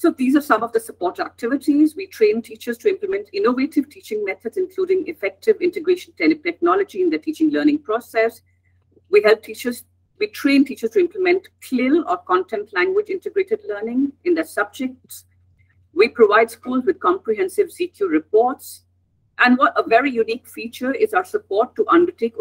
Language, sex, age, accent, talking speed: English, female, 50-69, Indian, 160 wpm